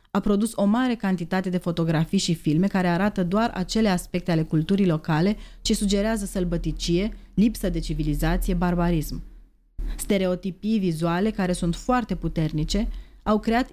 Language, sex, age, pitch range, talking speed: Romanian, female, 30-49, 165-195 Hz, 140 wpm